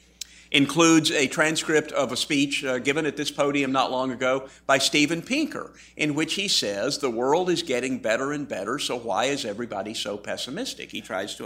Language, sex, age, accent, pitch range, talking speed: English, male, 50-69, American, 125-165 Hz, 195 wpm